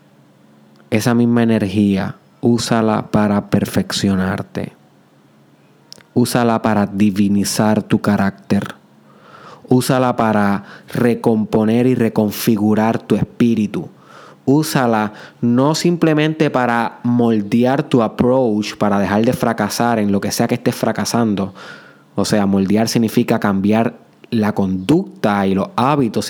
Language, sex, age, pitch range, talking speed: Spanish, male, 20-39, 100-125 Hz, 105 wpm